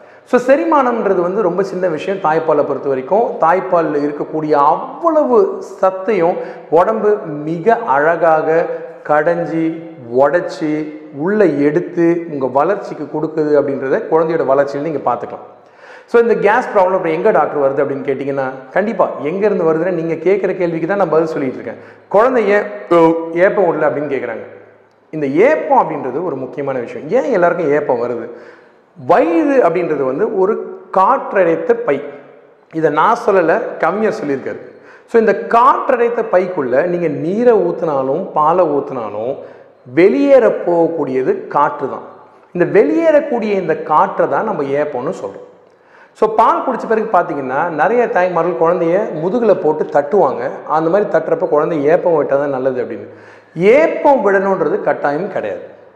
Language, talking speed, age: Tamil, 130 wpm, 40-59